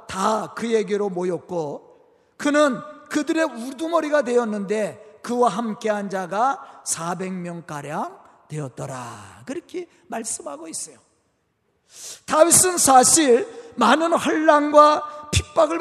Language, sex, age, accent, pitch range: Korean, male, 40-59, native, 225-320 Hz